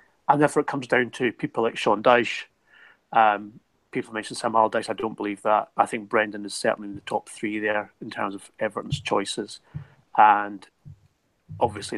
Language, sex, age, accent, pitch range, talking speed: English, male, 30-49, British, 110-140 Hz, 180 wpm